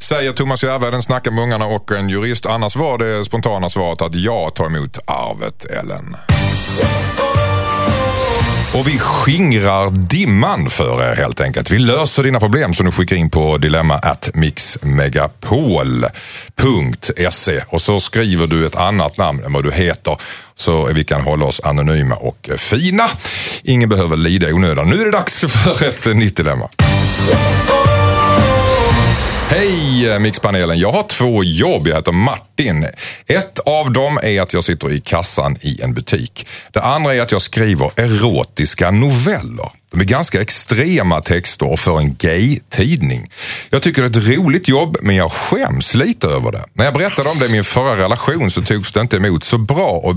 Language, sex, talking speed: Swedish, male, 165 wpm